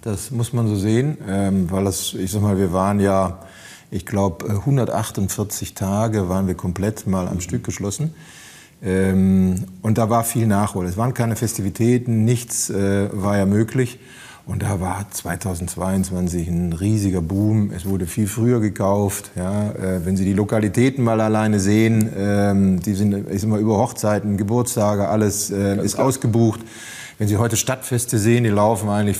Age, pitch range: 30-49, 95-115 Hz